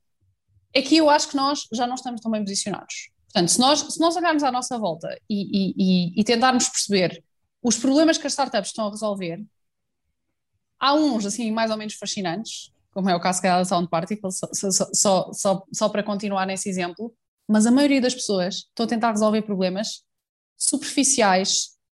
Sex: female